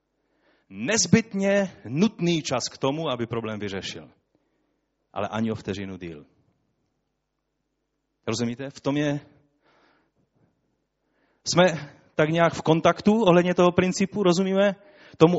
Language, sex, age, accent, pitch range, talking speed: Czech, male, 30-49, native, 130-180 Hz, 105 wpm